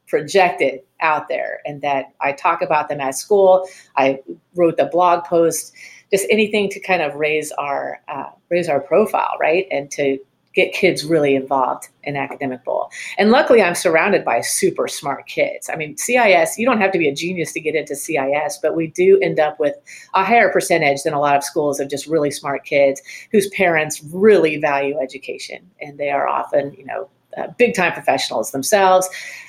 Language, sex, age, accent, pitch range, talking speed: English, female, 40-59, American, 145-185 Hz, 190 wpm